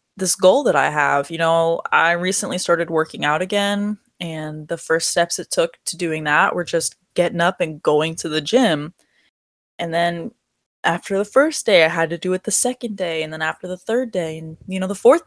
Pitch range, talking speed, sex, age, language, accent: 170-225 Hz, 220 wpm, female, 20-39, English, American